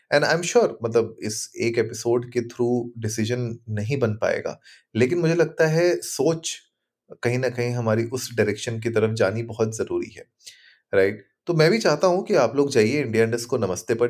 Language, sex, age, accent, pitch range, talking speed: Hindi, male, 30-49, native, 110-160 Hz, 205 wpm